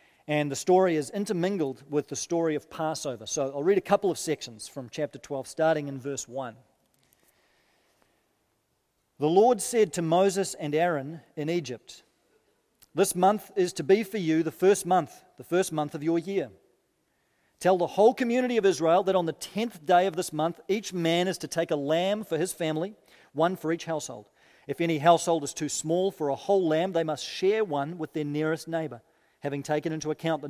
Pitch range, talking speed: 150-180 Hz, 195 wpm